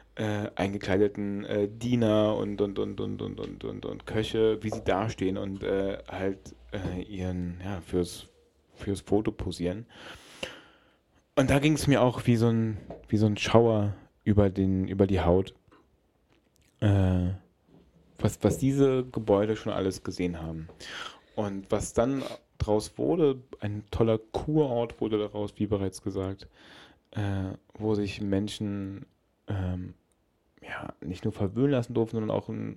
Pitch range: 95-120 Hz